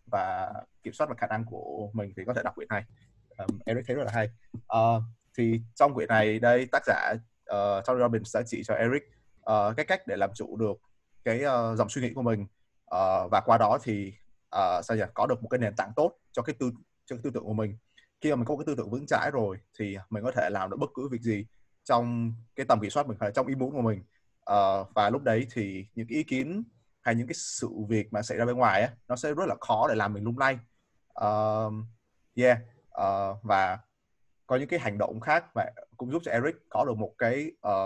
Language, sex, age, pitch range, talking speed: Vietnamese, male, 20-39, 105-125 Hz, 240 wpm